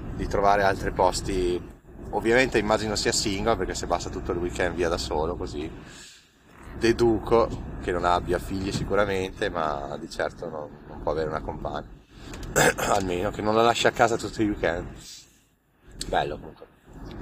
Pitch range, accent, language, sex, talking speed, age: 85-115 Hz, native, Italian, male, 155 wpm, 30-49